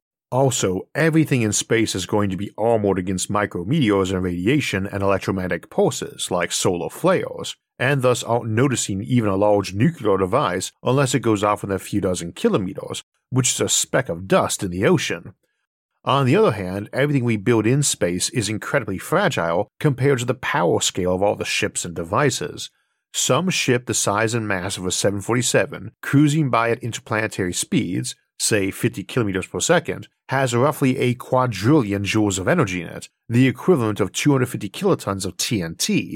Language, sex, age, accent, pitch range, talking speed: English, male, 50-69, American, 95-125 Hz, 175 wpm